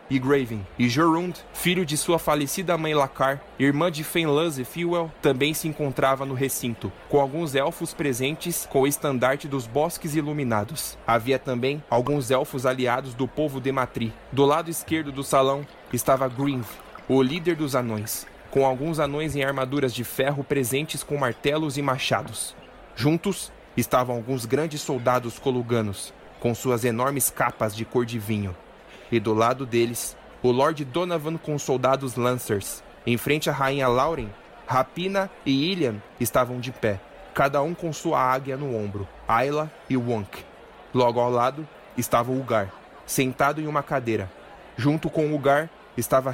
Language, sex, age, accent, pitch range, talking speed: Portuguese, male, 20-39, Brazilian, 125-150 Hz, 160 wpm